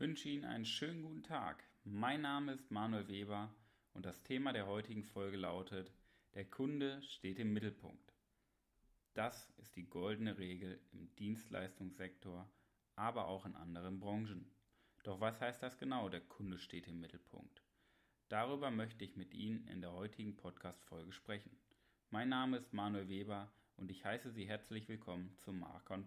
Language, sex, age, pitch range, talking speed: German, male, 30-49, 95-120 Hz, 160 wpm